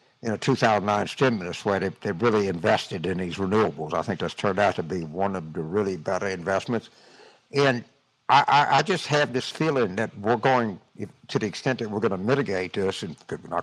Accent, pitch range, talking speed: American, 110-140 Hz, 210 wpm